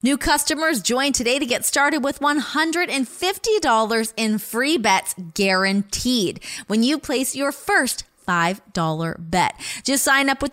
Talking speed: 135 wpm